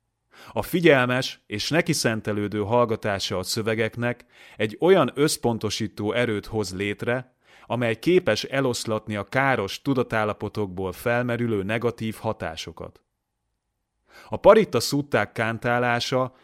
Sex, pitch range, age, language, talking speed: male, 105-125 Hz, 30-49, Hungarian, 95 wpm